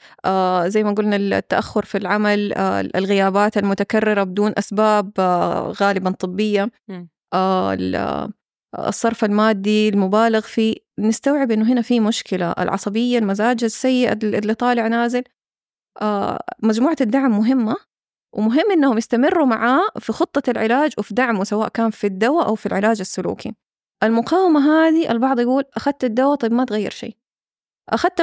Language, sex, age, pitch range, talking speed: Arabic, female, 20-39, 210-255 Hz, 135 wpm